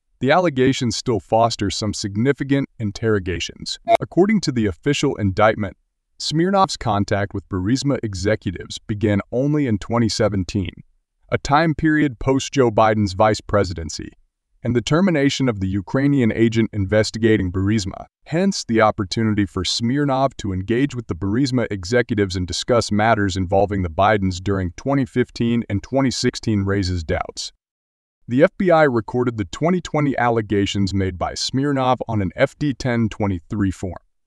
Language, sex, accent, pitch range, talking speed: English, male, American, 100-130 Hz, 130 wpm